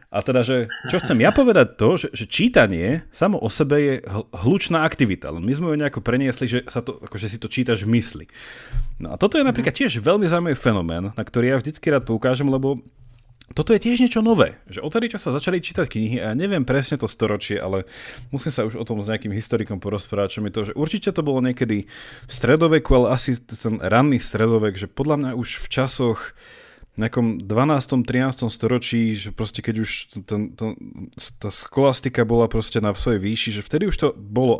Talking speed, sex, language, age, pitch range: 210 wpm, male, Slovak, 30-49, 110-145 Hz